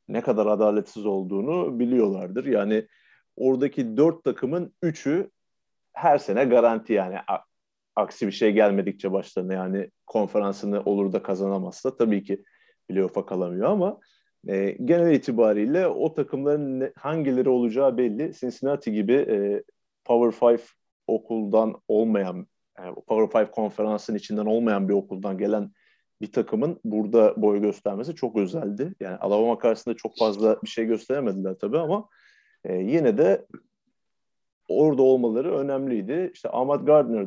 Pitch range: 100-145 Hz